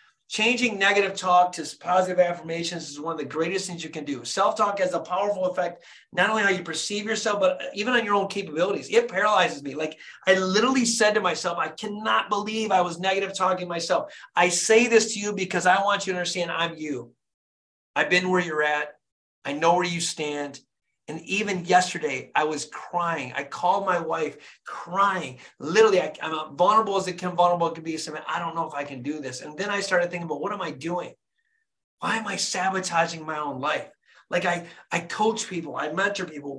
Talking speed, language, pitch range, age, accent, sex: 205 wpm, English, 160-205 Hz, 30-49, American, male